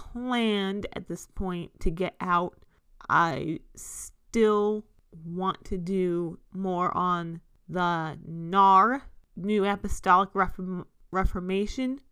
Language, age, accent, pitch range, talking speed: English, 30-49, American, 180-215 Hz, 100 wpm